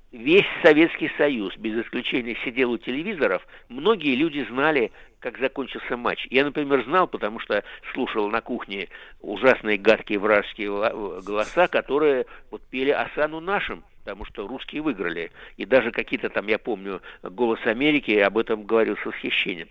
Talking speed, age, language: 145 wpm, 60-79, Russian